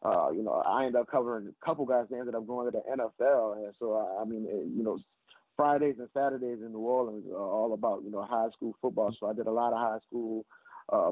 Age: 30-49